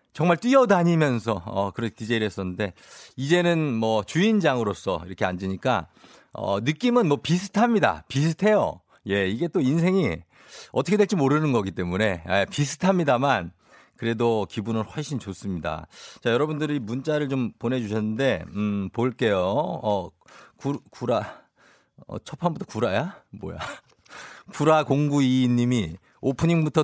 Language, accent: Korean, native